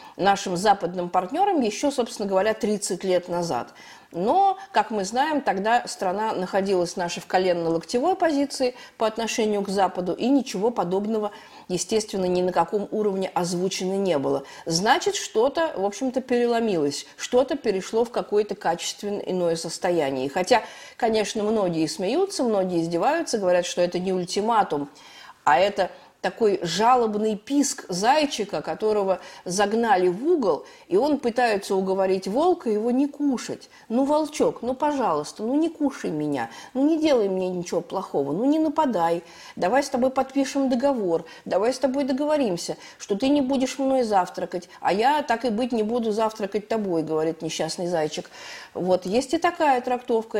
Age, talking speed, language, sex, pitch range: 50-69, 150 wpm, Russian, female, 185-265 Hz